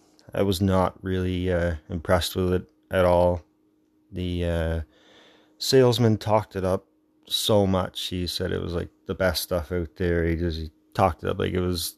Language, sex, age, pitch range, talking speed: English, male, 30-49, 90-135 Hz, 185 wpm